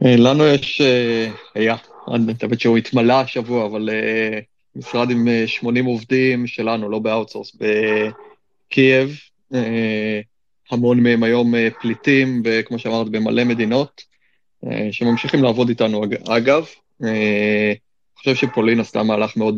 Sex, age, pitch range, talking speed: male, 30-49, 110-130 Hz, 125 wpm